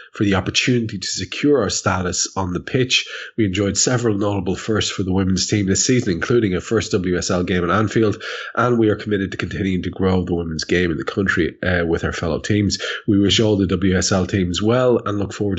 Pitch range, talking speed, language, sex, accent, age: 90-115 Hz, 220 wpm, English, male, Irish, 30-49